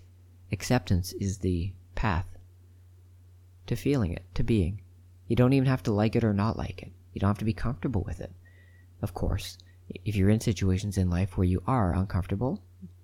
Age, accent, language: 40-59, American, English